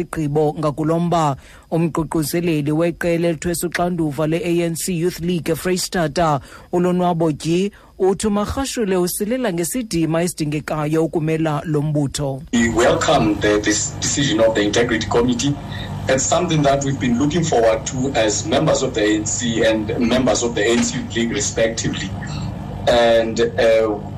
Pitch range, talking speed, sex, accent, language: 120-165 Hz, 135 wpm, male, South African, English